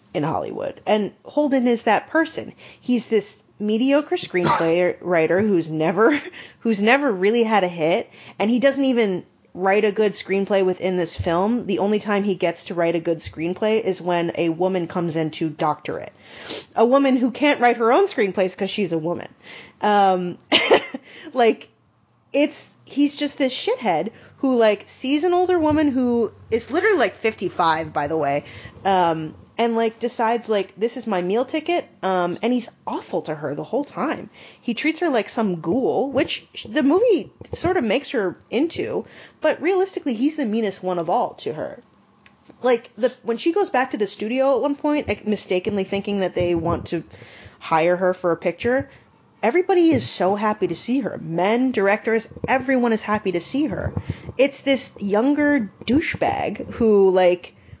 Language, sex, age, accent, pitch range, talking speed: English, female, 30-49, American, 180-265 Hz, 175 wpm